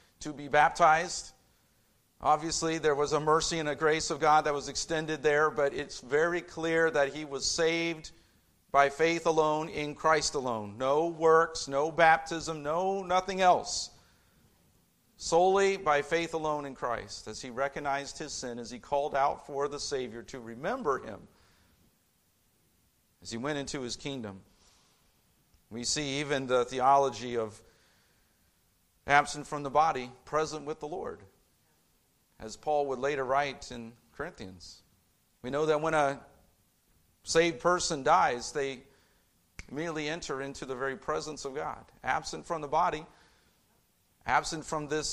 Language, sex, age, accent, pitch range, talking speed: English, male, 50-69, American, 115-155 Hz, 145 wpm